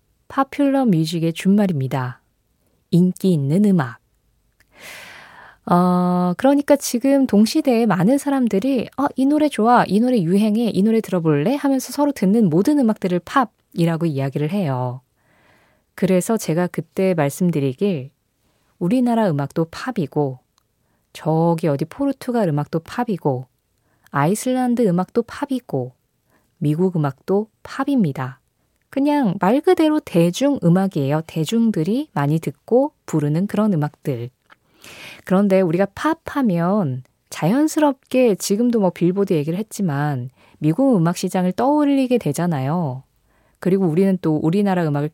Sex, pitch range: female, 150-245 Hz